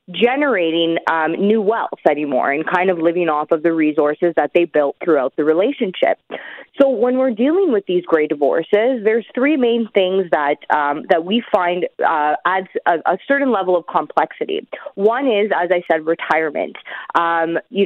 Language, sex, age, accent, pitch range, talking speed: English, female, 20-39, American, 160-220 Hz, 175 wpm